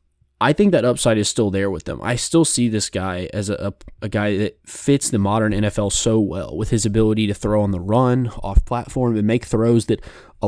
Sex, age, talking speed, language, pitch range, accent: male, 20-39, 230 wpm, English, 100-120 Hz, American